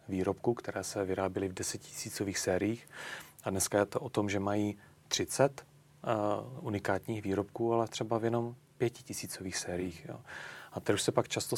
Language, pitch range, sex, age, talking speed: Czech, 100-115 Hz, male, 30-49, 165 wpm